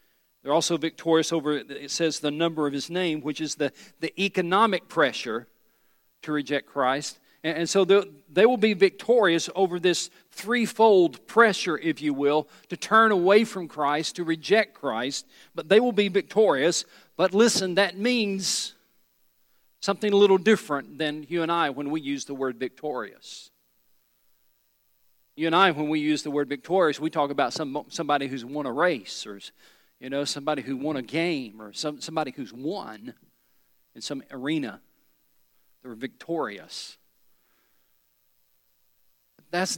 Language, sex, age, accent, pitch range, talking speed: English, male, 50-69, American, 135-180 Hz, 155 wpm